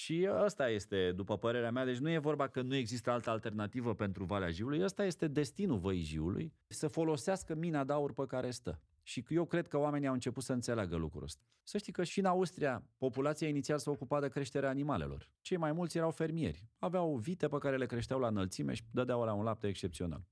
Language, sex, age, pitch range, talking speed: Romanian, male, 30-49, 105-155 Hz, 220 wpm